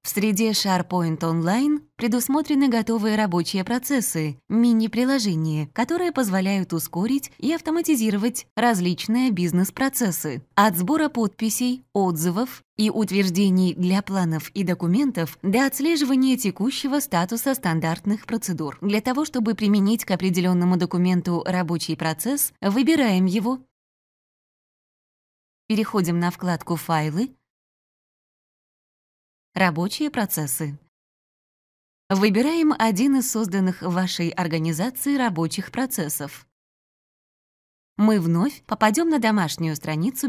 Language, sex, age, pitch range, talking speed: Russian, female, 20-39, 170-240 Hz, 100 wpm